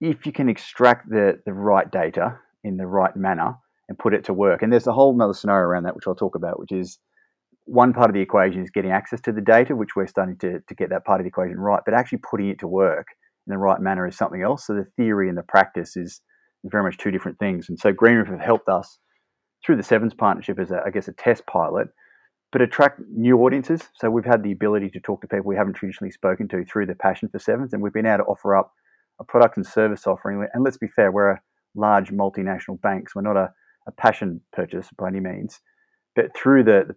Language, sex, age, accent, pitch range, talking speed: English, male, 30-49, Australian, 95-115 Hz, 250 wpm